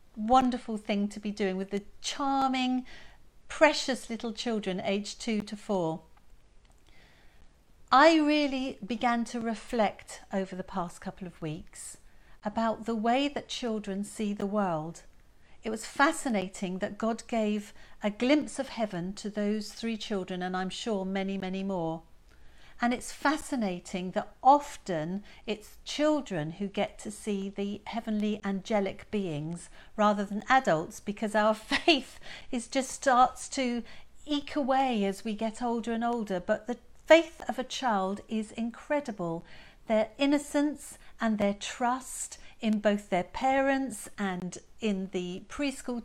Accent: British